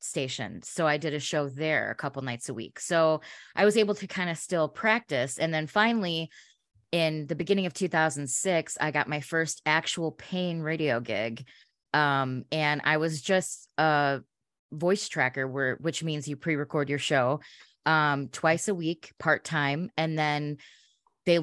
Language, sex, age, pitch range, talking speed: English, female, 20-39, 140-165 Hz, 170 wpm